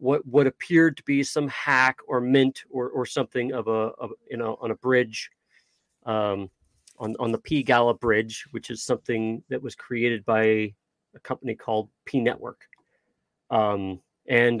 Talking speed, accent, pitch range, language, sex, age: 170 wpm, American, 115-145 Hz, English, male, 40-59